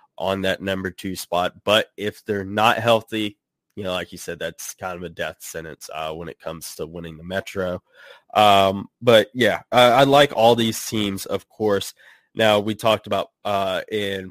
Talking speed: 195 wpm